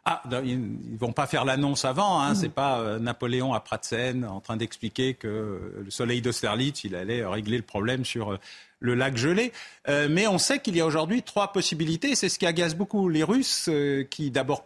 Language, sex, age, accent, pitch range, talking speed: French, male, 40-59, French, 120-165 Hz, 230 wpm